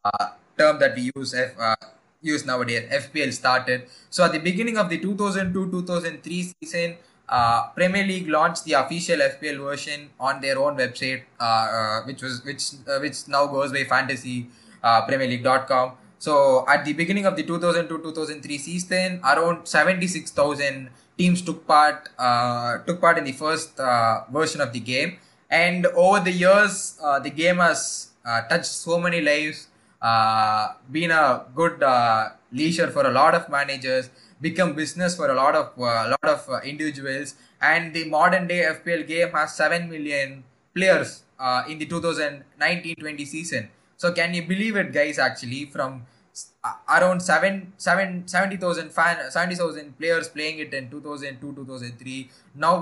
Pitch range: 130-170 Hz